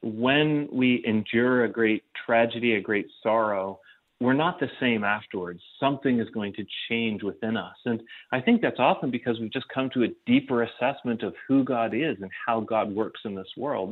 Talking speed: 195 wpm